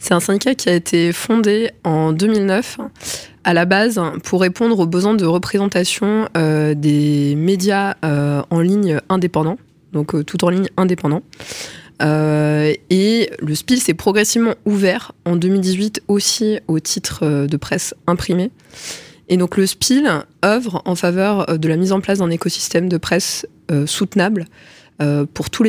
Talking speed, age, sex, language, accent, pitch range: 160 wpm, 20-39, female, French, French, 165-200 Hz